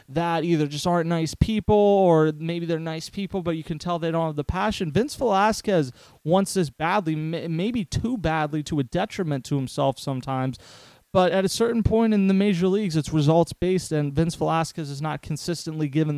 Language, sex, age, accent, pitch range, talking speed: English, male, 30-49, American, 150-180 Hz, 195 wpm